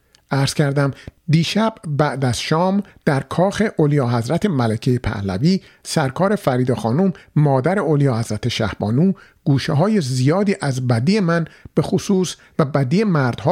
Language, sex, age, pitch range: Persian, male, 50-69, 130-175 Hz